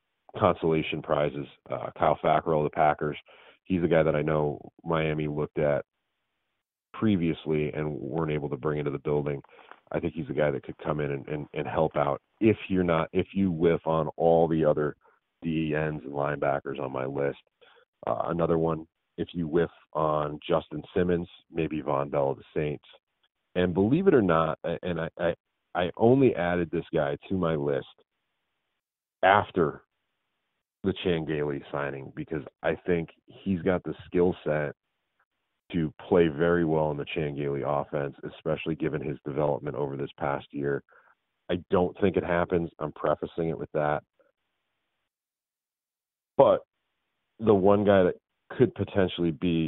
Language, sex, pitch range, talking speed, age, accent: English, male, 75-85 Hz, 160 wpm, 40-59, American